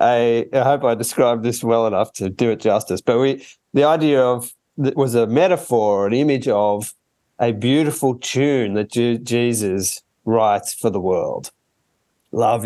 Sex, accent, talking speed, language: male, Australian, 155 wpm, English